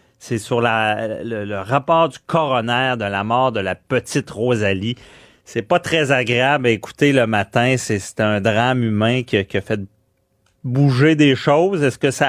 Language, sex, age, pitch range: French, male, 30-49, 100-130 Hz